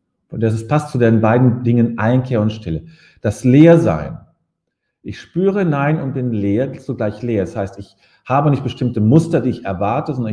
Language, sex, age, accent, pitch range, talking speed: German, male, 40-59, German, 110-150 Hz, 180 wpm